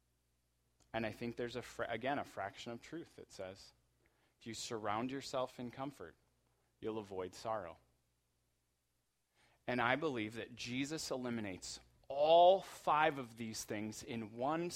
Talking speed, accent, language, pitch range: 140 wpm, American, English, 95-150 Hz